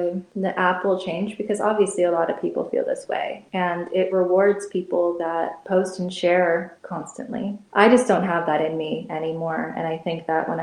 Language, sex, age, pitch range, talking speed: English, female, 20-39, 160-190 Hz, 200 wpm